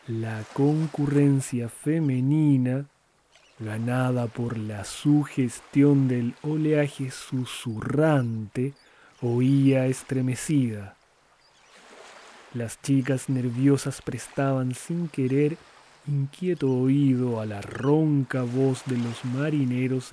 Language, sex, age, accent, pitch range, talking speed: Spanish, male, 30-49, Argentinian, 125-150 Hz, 80 wpm